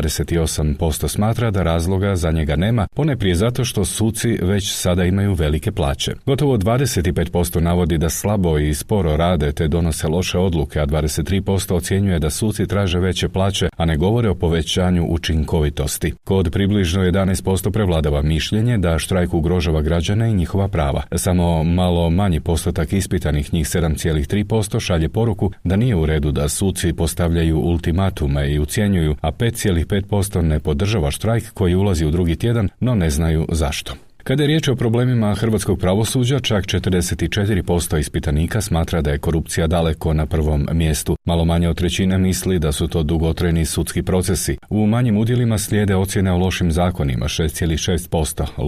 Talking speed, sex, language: 155 wpm, male, Croatian